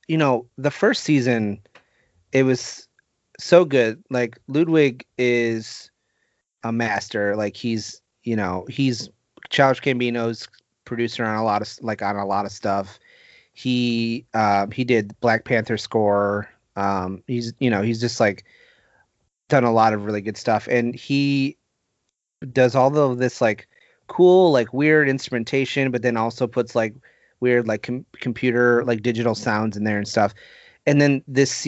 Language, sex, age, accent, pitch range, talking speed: English, male, 30-49, American, 115-130 Hz, 155 wpm